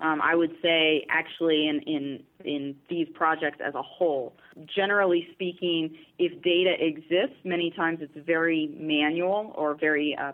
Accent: American